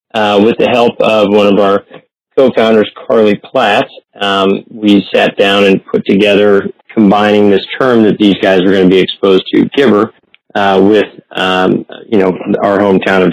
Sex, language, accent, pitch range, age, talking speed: male, English, American, 95-105 Hz, 40-59, 175 wpm